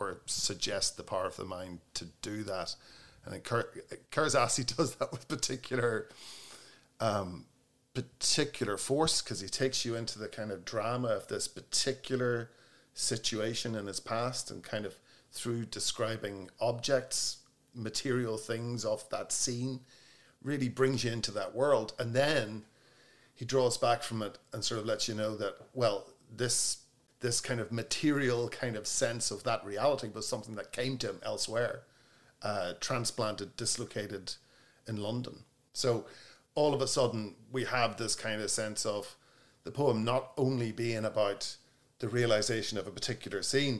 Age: 40-59